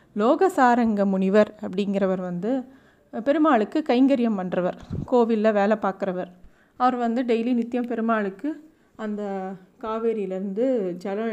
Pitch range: 215-270 Hz